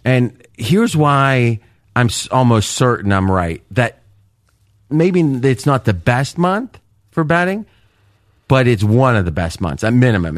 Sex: male